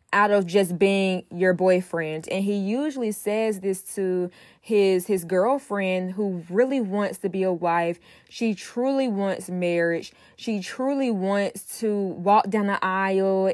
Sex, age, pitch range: female, 10-29, 185-225 Hz